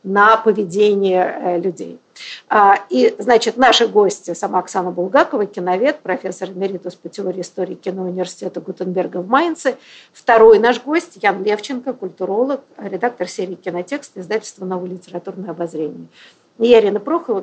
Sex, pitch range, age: female, 195-260 Hz, 50-69